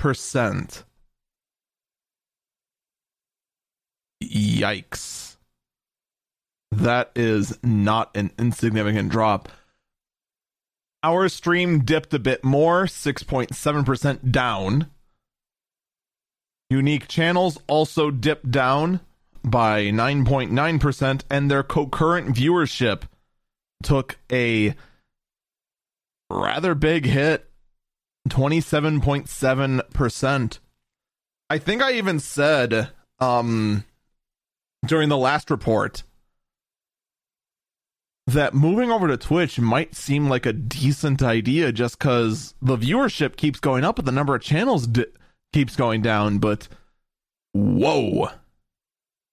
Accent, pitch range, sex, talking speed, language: American, 115-155 Hz, male, 85 wpm, English